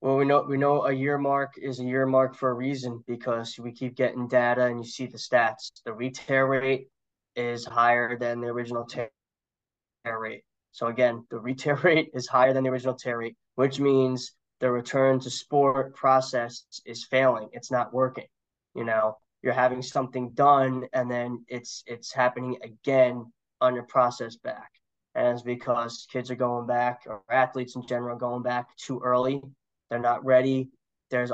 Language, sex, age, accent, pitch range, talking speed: English, male, 20-39, American, 120-130 Hz, 180 wpm